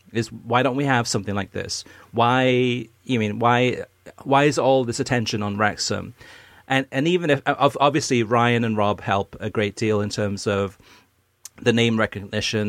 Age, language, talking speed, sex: 40-59, English, 180 wpm, male